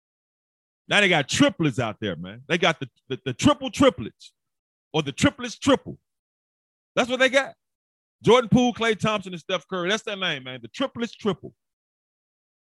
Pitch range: 115-185 Hz